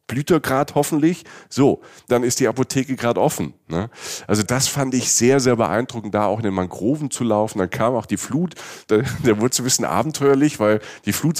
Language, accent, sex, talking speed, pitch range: German, German, male, 200 wpm, 100-130 Hz